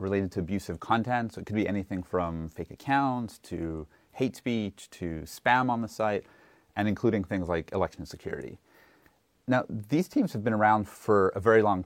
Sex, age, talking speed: male, 30-49, 180 wpm